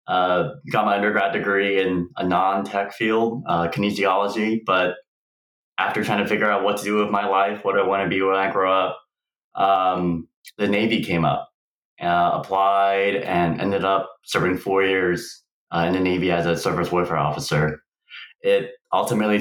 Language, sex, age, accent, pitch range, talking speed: English, male, 20-39, American, 95-105 Hz, 175 wpm